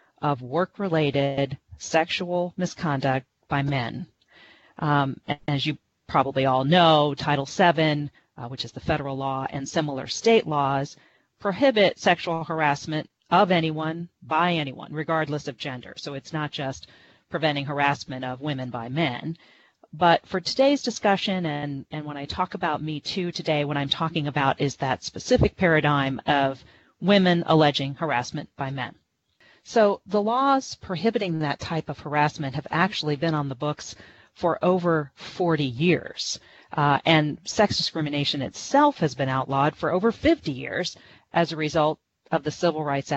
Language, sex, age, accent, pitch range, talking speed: English, female, 40-59, American, 140-175 Hz, 150 wpm